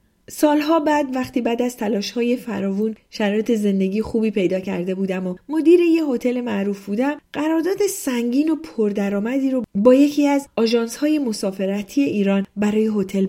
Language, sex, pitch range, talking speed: Persian, female, 195-280 Hz, 150 wpm